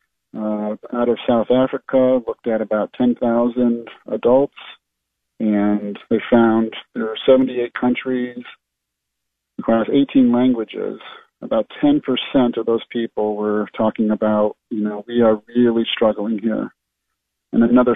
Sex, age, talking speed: male, 40-59, 125 wpm